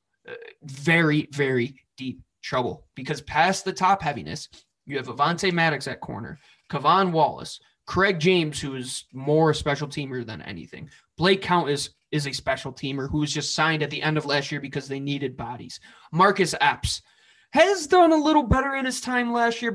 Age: 20-39